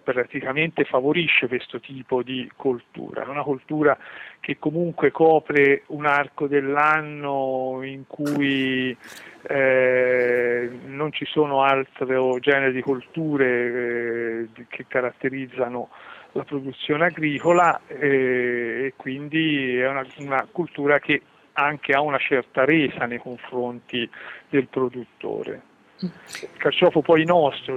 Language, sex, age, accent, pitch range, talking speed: Italian, male, 40-59, native, 125-145 Hz, 110 wpm